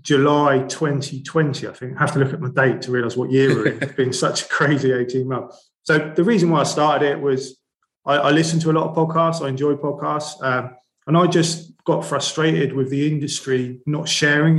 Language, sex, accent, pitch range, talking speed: English, male, British, 130-150 Hz, 220 wpm